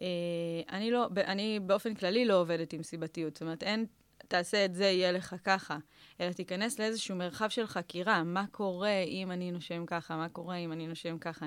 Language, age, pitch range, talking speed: Hebrew, 20-39, 165-205 Hz, 200 wpm